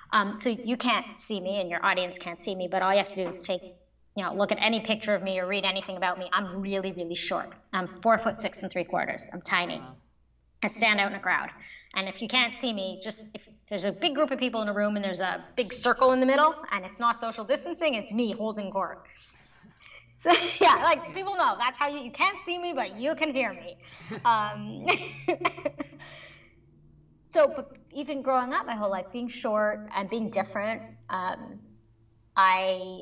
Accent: American